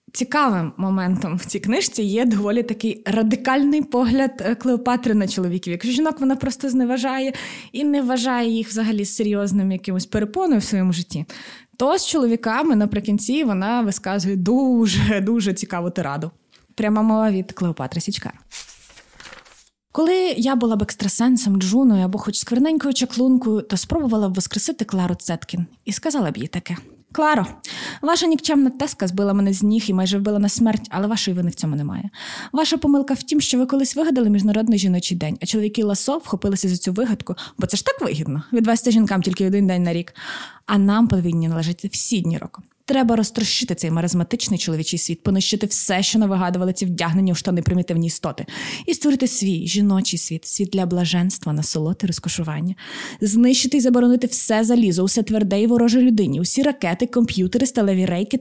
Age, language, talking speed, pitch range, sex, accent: 20-39, Ukrainian, 165 wpm, 185-245 Hz, female, native